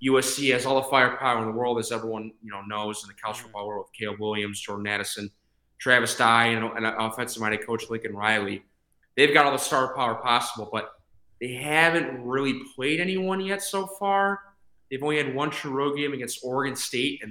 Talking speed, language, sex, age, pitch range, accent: 195 wpm, English, male, 20-39, 110-135 Hz, American